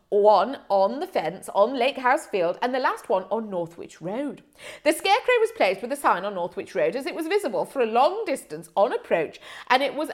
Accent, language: British, English